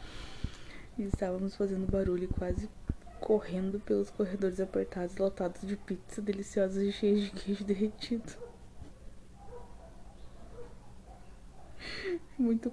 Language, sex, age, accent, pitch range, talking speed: Portuguese, female, 20-39, Brazilian, 185-215 Hz, 85 wpm